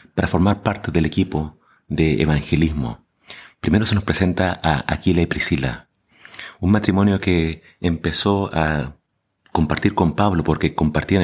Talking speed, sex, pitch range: 135 wpm, male, 80-95 Hz